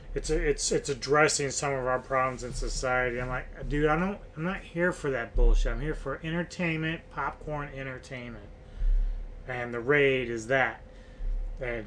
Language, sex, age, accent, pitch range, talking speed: English, male, 30-49, American, 110-150 Hz, 170 wpm